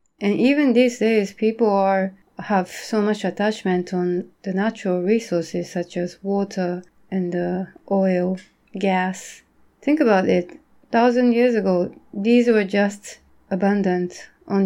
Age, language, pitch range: 30-49, Japanese, 185-220 Hz